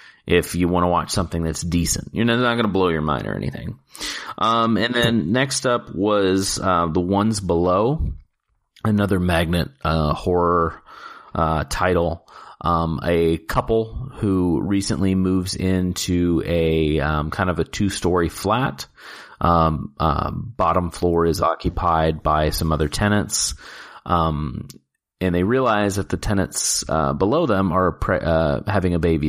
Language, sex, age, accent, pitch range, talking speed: English, male, 30-49, American, 85-105 Hz, 150 wpm